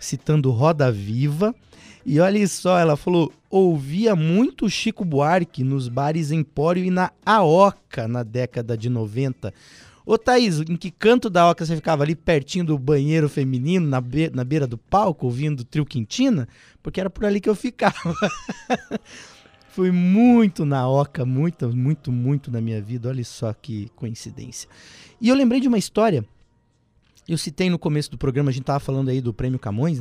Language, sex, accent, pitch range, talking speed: Portuguese, male, Brazilian, 120-170 Hz, 175 wpm